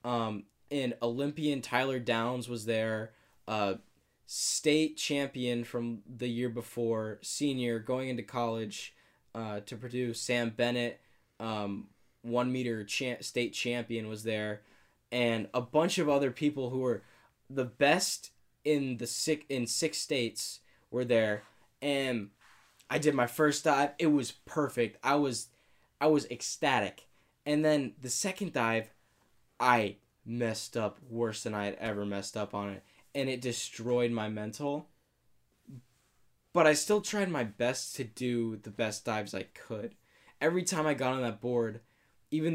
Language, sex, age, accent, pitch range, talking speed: English, male, 10-29, American, 110-140 Hz, 150 wpm